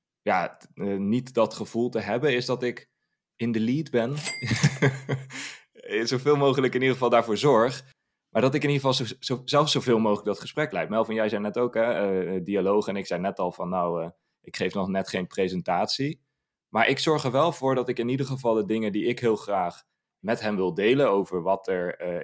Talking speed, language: 215 wpm, Dutch